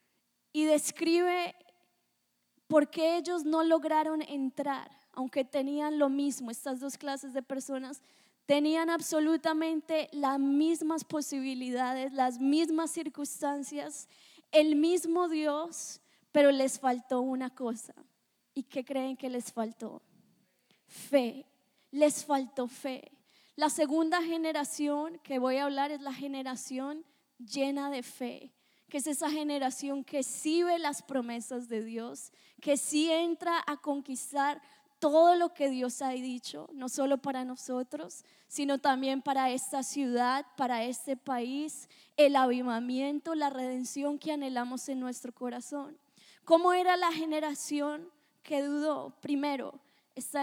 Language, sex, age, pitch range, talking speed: English, female, 20-39, 265-310 Hz, 125 wpm